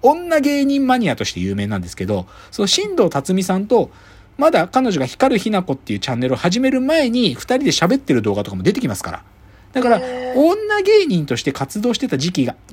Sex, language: male, Japanese